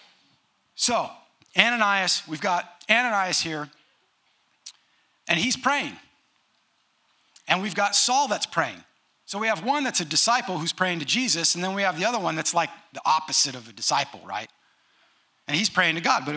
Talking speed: 170 wpm